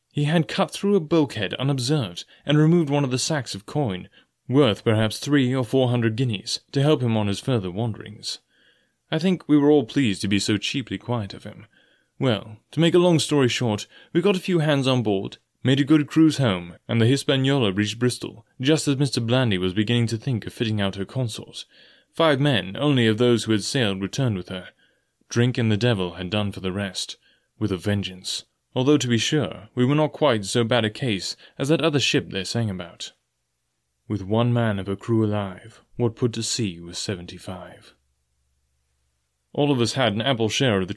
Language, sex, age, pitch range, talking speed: English, male, 30-49, 100-140 Hz, 210 wpm